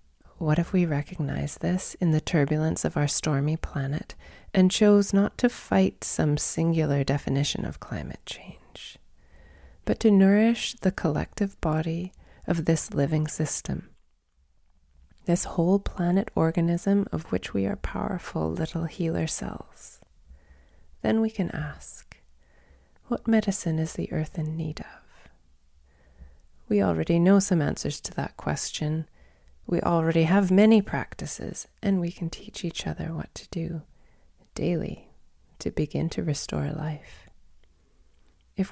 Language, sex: English, female